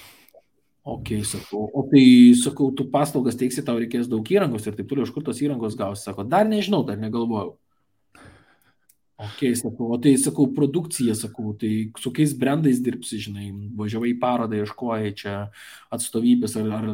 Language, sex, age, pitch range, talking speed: English, male, 20-39, 115-150 Hz, 160 wpm